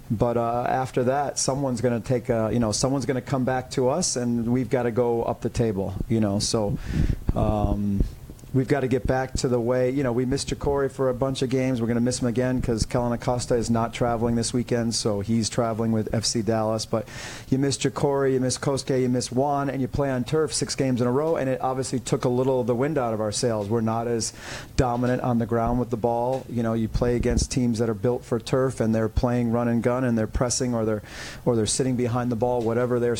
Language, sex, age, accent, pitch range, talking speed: English, male, 40-59, American, 115-130 Hz, 255 wpm